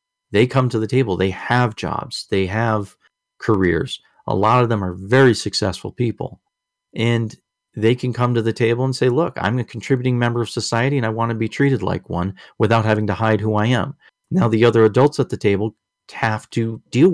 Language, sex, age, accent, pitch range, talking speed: English, male, 40-59, American, 105-130 Hz, 210 wpm